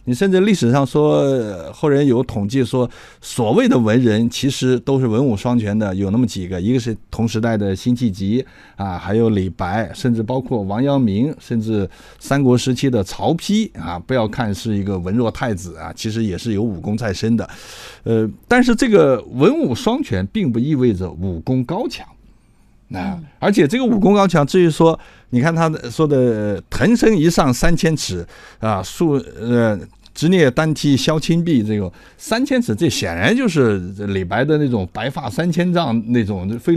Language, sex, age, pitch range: Chinese, male, 50-69, 105-145 Hz